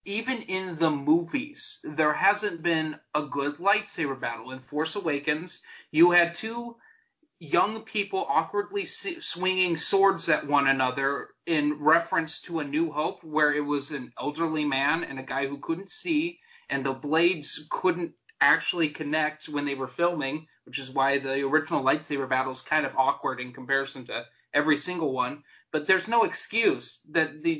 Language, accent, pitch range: English, American, 150-195 Hz